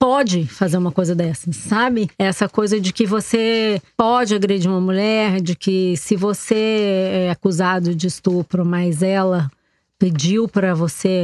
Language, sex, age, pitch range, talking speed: Portuguese, female, 20-39, 180-225 Hz, 150 wpm